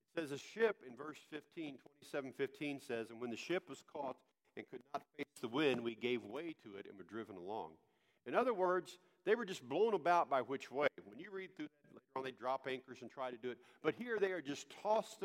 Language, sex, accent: English, male, American